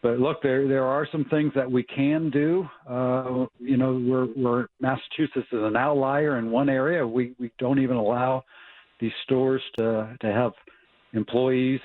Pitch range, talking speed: 115-135 Hz, 170 wpm